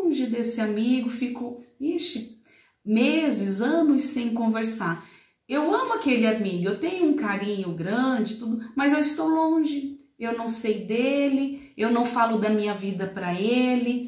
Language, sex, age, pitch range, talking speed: Portuguese, female, 40-59, 200-260 Hz, 145 wpm